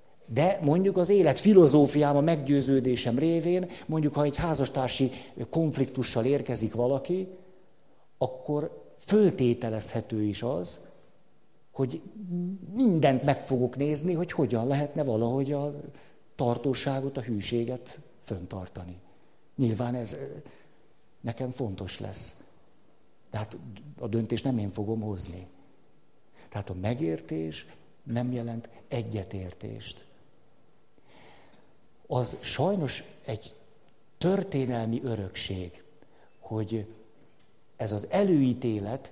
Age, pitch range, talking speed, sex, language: 60-79, 115-150 Hz, 90 wpm, male, Hungarian